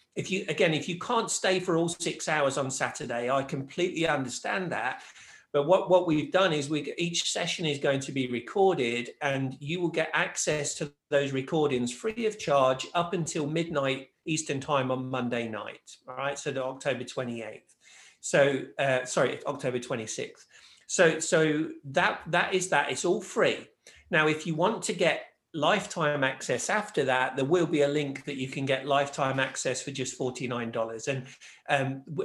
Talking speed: 180 wpm